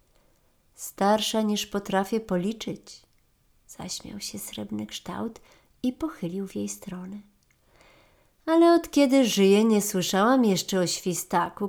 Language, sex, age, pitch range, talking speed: Polish, female, 40-59, 175-225 Hz, 115 wpm